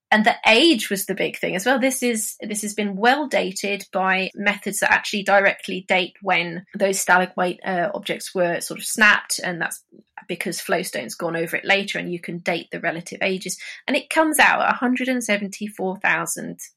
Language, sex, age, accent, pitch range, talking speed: English, female, 20-39, British, 195-250 Hz, 185 wpm